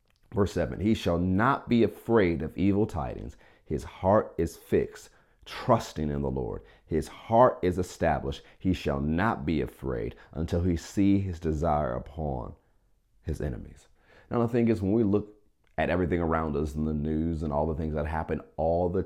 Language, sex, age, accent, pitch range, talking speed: English, male, 40-59, American, 75-95 Hz, 180 wpm